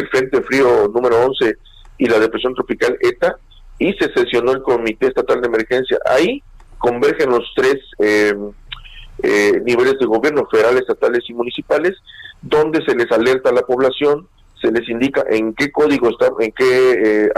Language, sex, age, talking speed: Spanish, male, 50-69, 160 wpm